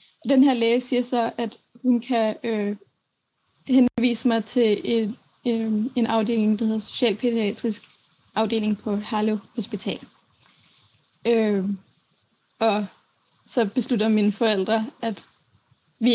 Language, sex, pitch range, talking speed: Danish, female, 215-245 Hz, 115 wpm